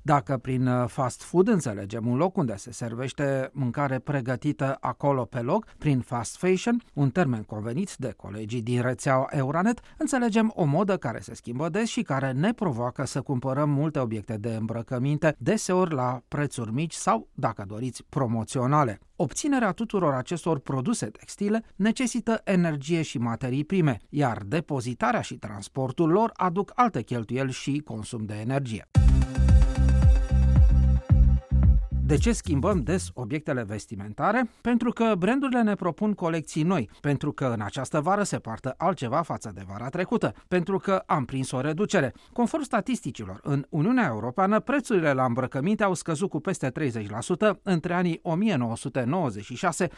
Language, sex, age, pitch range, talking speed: Romanian, male, 40-59, 125-190 Hz, 145 wpm